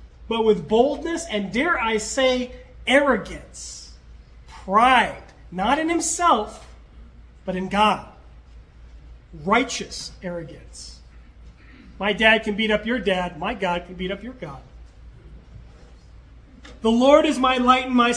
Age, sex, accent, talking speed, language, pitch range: 40-59, male, American, 125 wpm, English, 175-265 Hz